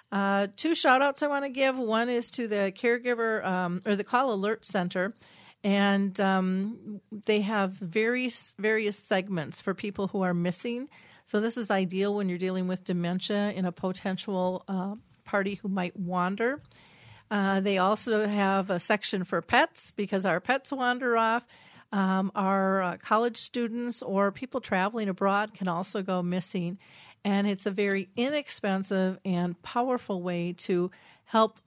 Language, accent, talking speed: English, American, 160 wpm